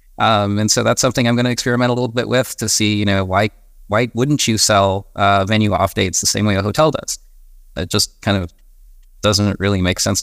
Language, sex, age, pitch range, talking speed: English, male, 30-49, 95-120 Hz, 235 wpm